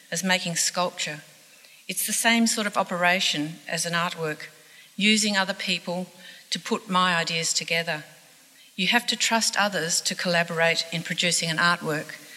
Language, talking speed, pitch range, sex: English, 150 wpm, 160-190 Hz, female